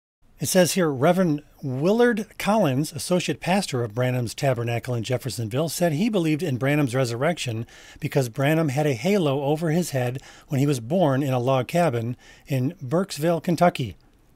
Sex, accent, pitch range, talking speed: male, American, 120-155 Hz, 160 wpm